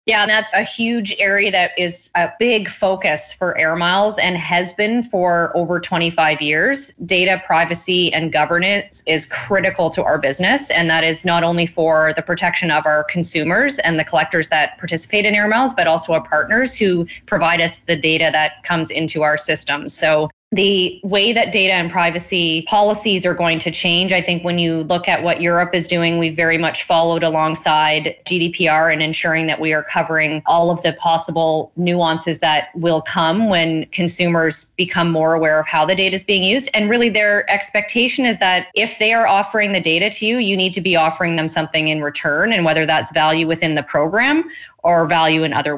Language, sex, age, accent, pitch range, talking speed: English, female, 20-39, American, 160-195 Hz, 200 wpm